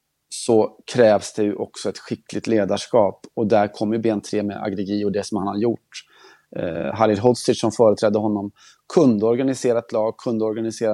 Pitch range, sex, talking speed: 110-120 Hz, male, 180 wpm